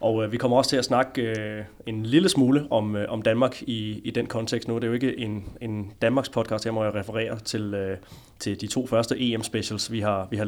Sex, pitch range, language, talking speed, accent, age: male, 105-120 Hz, Danish, 225 wpm, native, 20-39